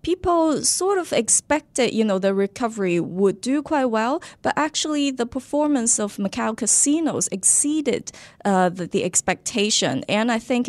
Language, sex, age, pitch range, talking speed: English, female, 20-39, 180-235 Hz, 150 wpm